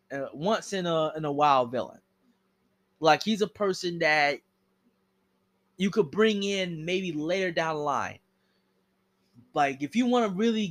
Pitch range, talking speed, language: 140-185 Hz, 155 wpm, English